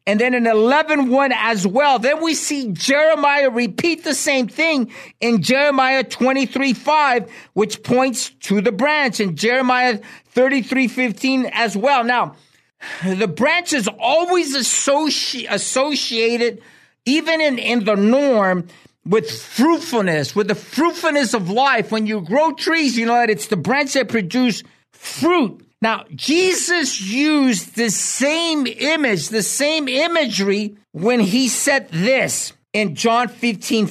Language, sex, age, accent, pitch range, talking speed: English, male, 50-69, American, 215-295 Hz, 135 wpm